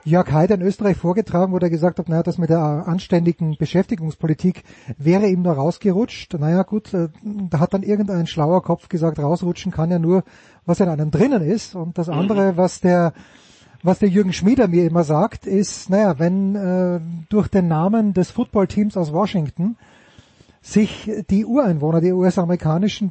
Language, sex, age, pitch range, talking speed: German, male, 30-49, 170-205 Hz, 170 wpm